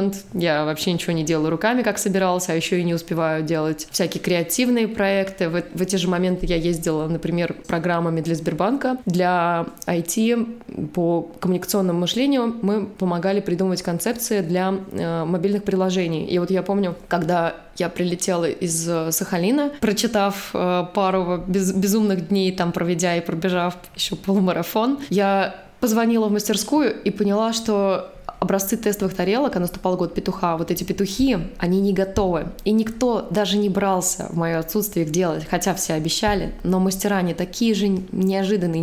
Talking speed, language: 155 wpm, Russian